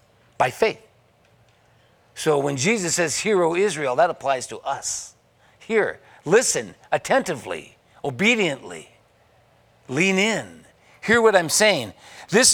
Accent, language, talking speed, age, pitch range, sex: American, English, 110 wpm, 50-69, 115-165 Hz, male